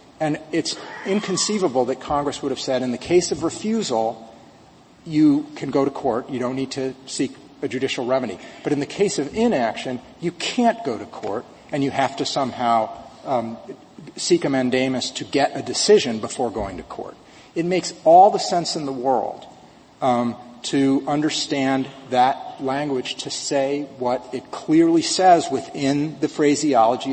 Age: 40-59